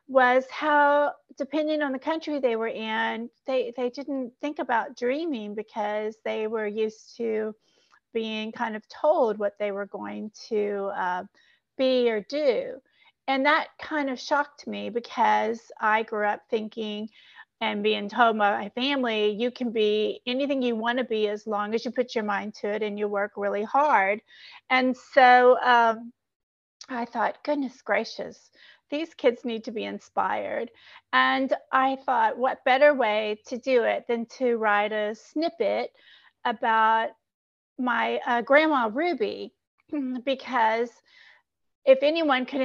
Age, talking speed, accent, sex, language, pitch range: 40-59, 150 wpm, American, female, English, 220-275 Hz